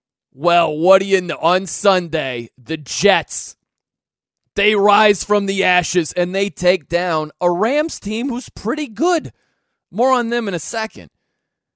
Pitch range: 130-195 Hz